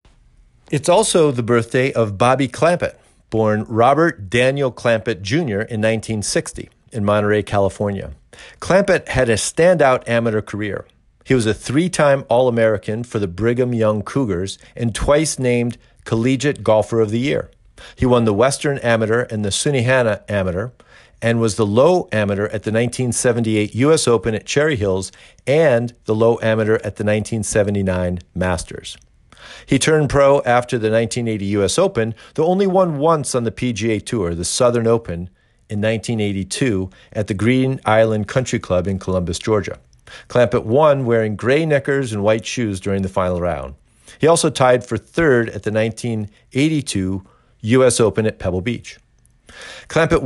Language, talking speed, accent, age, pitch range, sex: English, 150 wpm, American, 50-69, 105-130 Hz, male